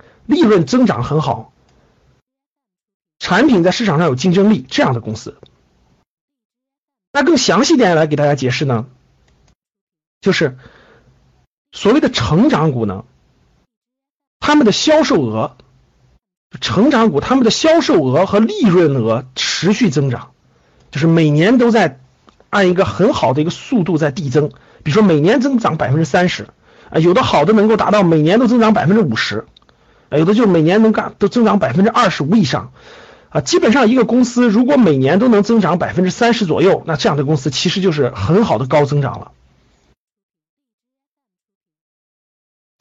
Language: Chinese